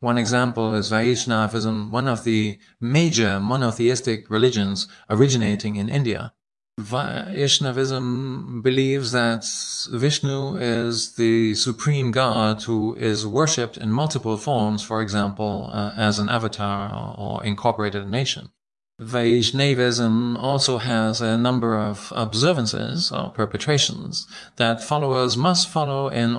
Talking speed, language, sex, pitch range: 115 wpm, English, male, 110-130 Hz